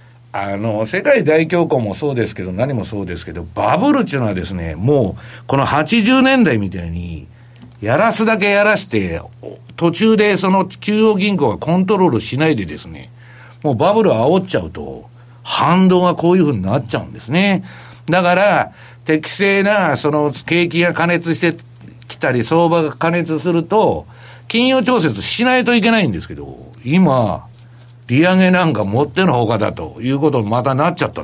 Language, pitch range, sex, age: Japanese, 120-180 Hz, male, 60-79